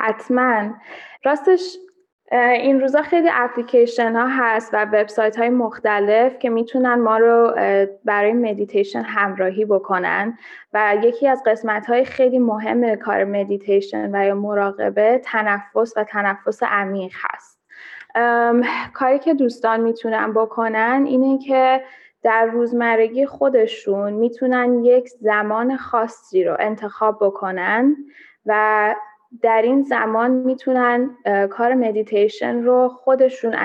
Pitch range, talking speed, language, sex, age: 205-245 Hz, 110 wpm, Persian, female, 10-29